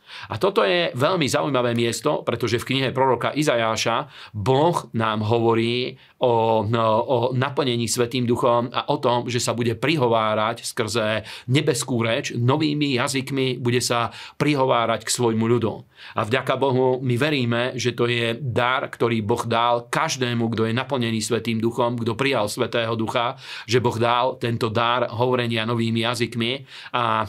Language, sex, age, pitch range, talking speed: Slovak, male, 40-59, 115-130 Hz, 150 wpm